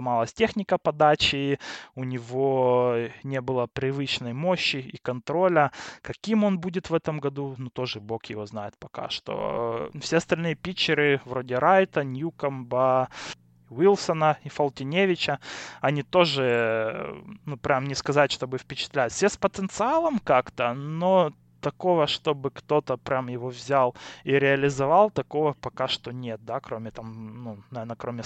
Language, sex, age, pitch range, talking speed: Russian, male, 20-39, 125-160 Hz, 135 wpm